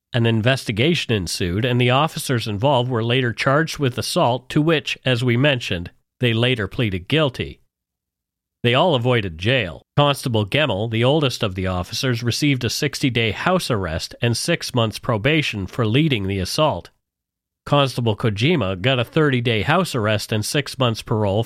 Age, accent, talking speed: 40-59, American, 155 wpm